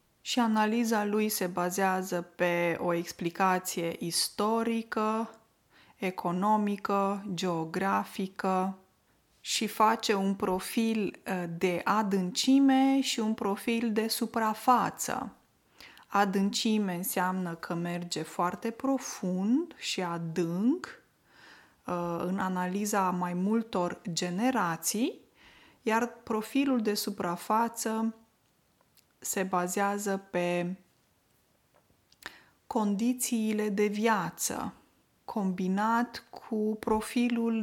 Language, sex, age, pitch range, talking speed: Romanian, female, 20-39, 180-230 Hz, 75 wpm